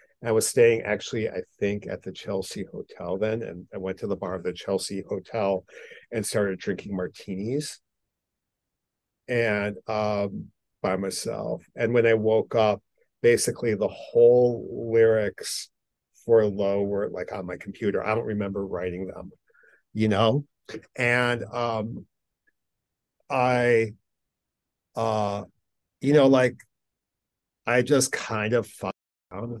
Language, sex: English, male